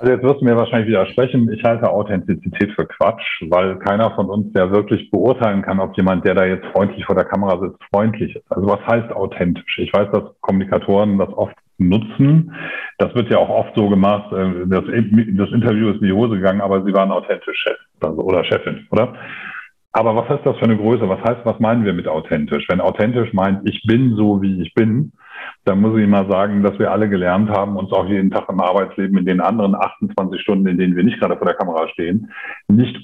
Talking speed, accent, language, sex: 215 wpm, German, German, male